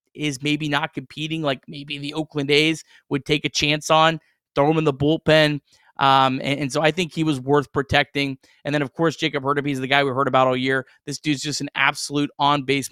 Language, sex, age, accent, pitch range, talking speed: English, male, 30-49, American, 140-160 Hz, 235 wpm